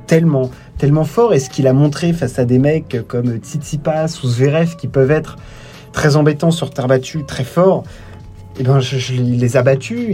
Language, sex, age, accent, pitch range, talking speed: French, male, 30-49, French, 130-150 Hz, 205 wpm